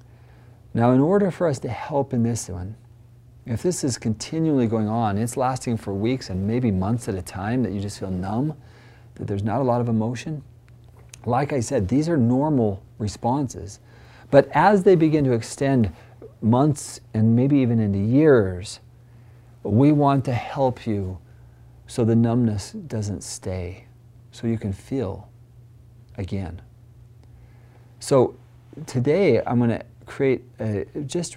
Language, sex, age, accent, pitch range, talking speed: English, male, 40-59, American, 110-125 Hz, 150 wpm